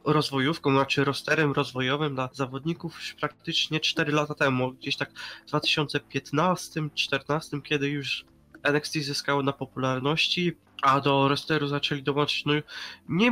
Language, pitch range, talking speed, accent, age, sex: Polish, 140-165 Hz, 125 wpm, native, 20-39, male